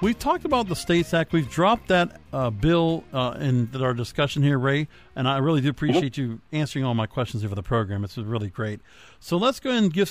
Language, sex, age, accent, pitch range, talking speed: English, male, 50-69, American, 130-175 Hz, 230 wpm